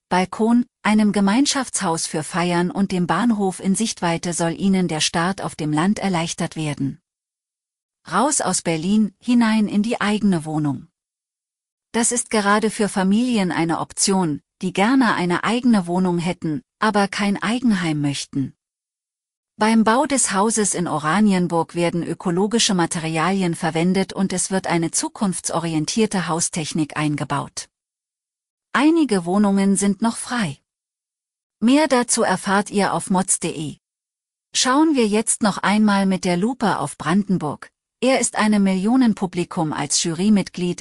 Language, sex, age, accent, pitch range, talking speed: German, female, 40-59, German, 165-215 Hz, 130 wpm